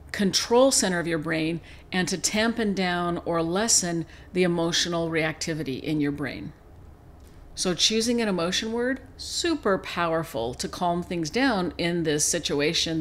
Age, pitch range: 50-69, 160-200 Hz